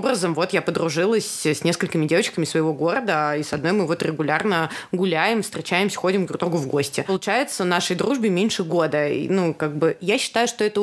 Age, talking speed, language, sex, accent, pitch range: 20-39, 190 wpm, Russian, female, native, 165-220 Hz